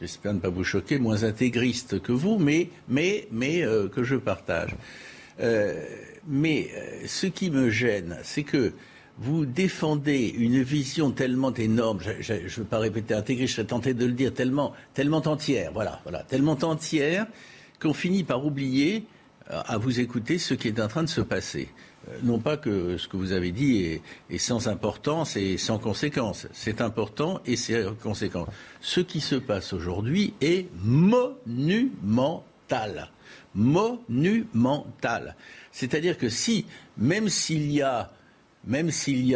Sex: male